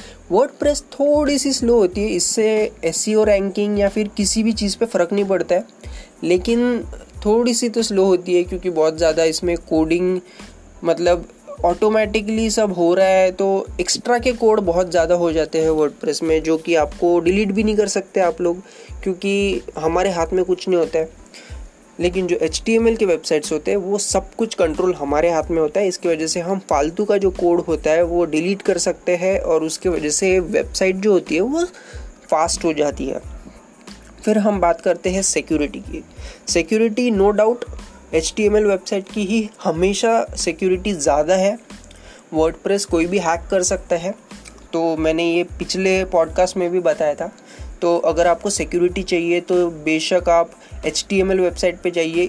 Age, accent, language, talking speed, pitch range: 20-39, native, Hindi, 180 wpm, 165-200 Hz